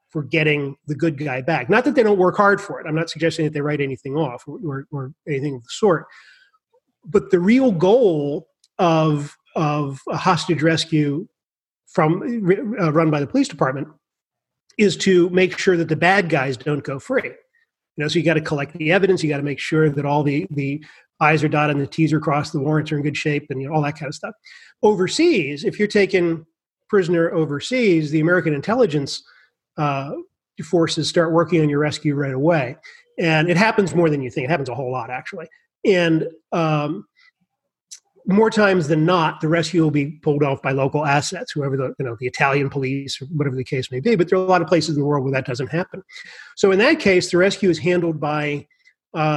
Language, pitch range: English, 145-185 Hz